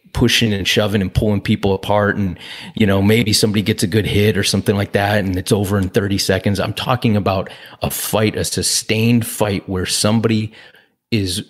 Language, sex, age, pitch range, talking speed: English, male, 30-49, 95-110 Hz, 195 wpm